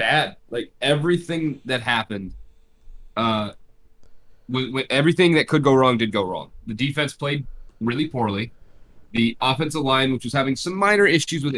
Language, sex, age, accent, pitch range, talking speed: English, male, 30-49, American, 110-145 Hz, 160 wpm